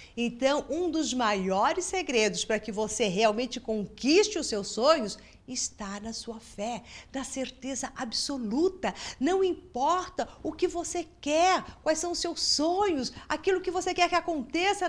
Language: Portuguese